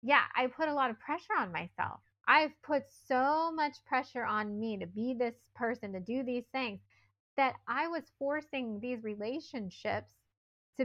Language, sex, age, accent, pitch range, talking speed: English, female, 20-39, American, 200-270 Hz, 170 wpm